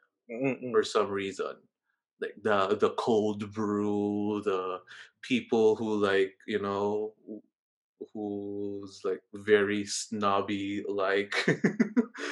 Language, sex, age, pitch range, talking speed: English, male, 20-39, 100-140 Hz, 95 wpm